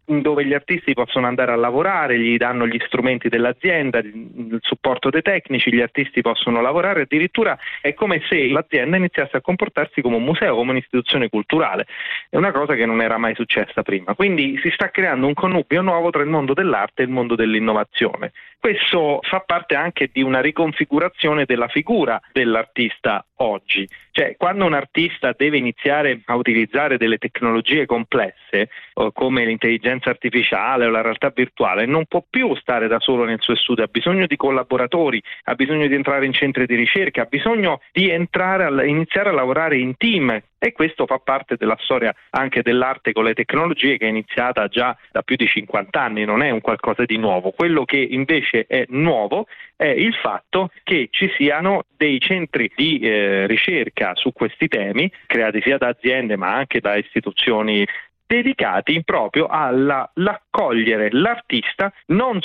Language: Italian